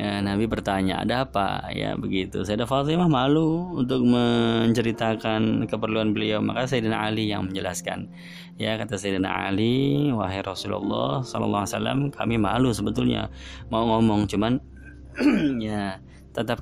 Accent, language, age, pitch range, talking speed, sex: native, Indonesian, 20-39, 100-125 Hz, 120 wpm, male